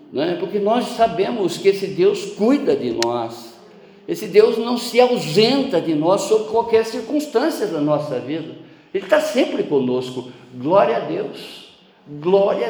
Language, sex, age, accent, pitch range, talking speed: Portuguese, male, 60-79, Brazilian, 140-220 Hz, 140 wpm